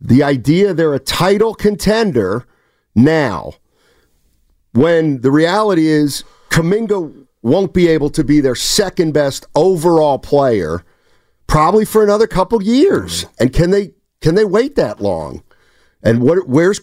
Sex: male